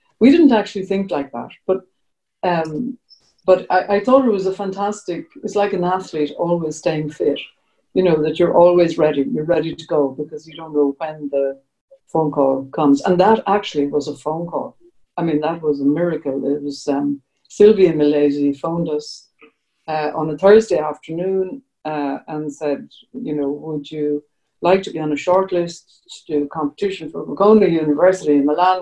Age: 60-79